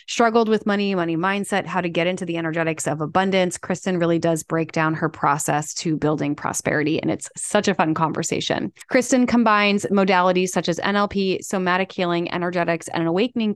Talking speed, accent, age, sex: 175 wpm, American, 20-39, female